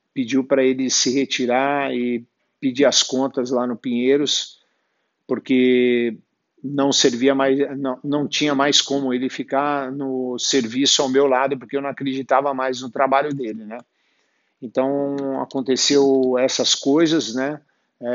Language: Portuguese